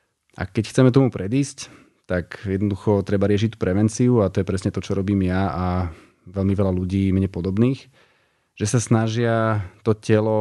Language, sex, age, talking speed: Slovak, male, 30-49, 165 wpm